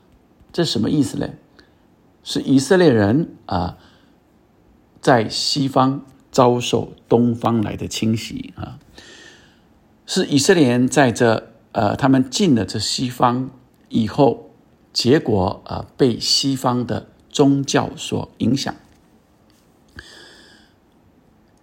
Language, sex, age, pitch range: Chinese, male, 50-69, 105-135 Hz